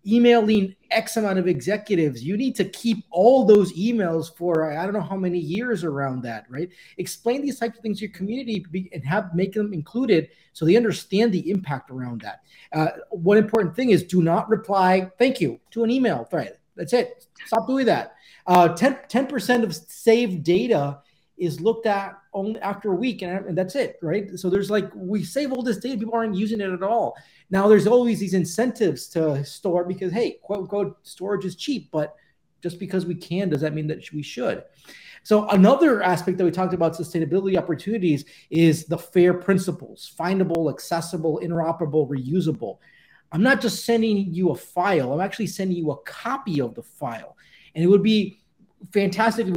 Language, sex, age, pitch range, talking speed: English, male, 30-49, 170-210 Hz, 190 wpm